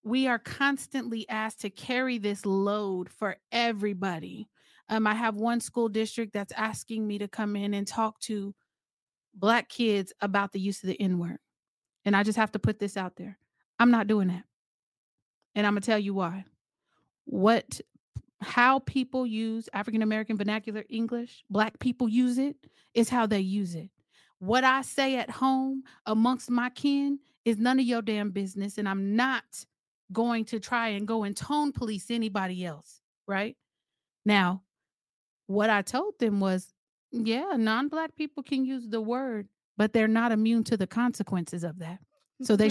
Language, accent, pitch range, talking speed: English, American, 200-245 Hz, 170 wpm